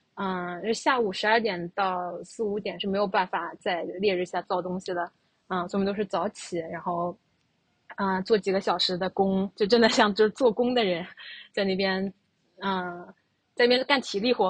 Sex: female